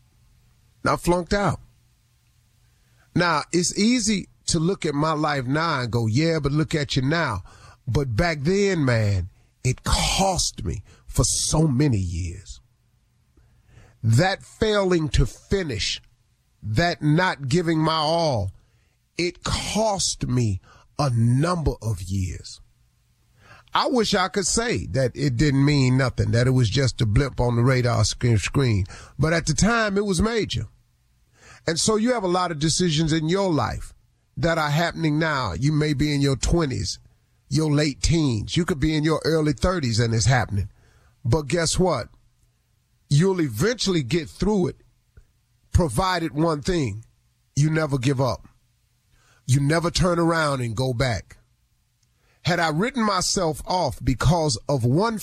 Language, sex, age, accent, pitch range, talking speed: English, male, 40-59, American, 115-165 Hz, 150 wpm